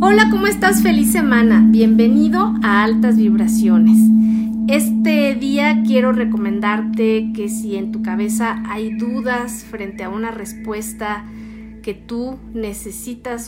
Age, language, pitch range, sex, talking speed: 40-59, Spanish, 210-240 Hz, female, 120 wpm